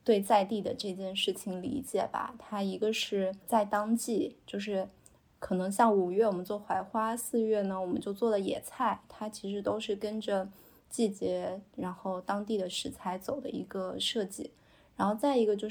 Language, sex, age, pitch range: Chinese, female, 20-39, 190-225 Hz